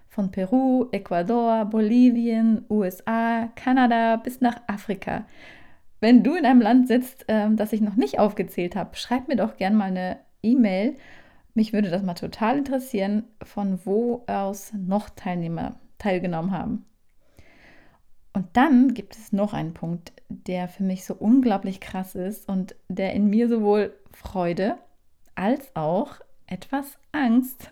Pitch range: 195-235 Hz